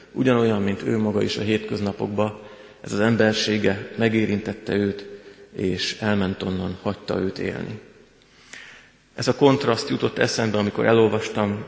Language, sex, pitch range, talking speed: Hungarian, male, 105-115 Hz, 130 wpm